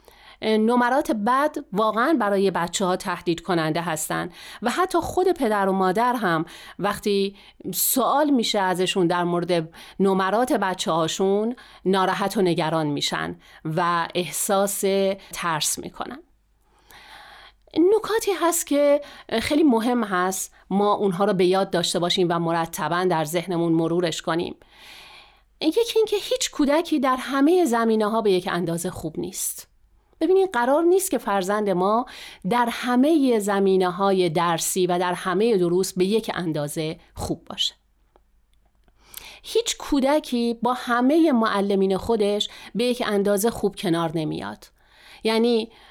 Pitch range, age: 185-255 Hz, 40-59